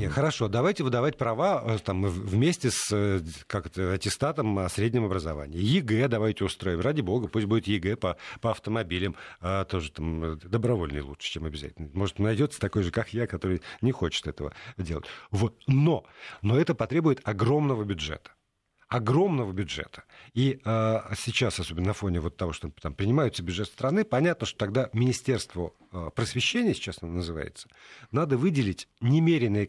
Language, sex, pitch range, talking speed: Russian, male, 95-130 Hz, 150 wpm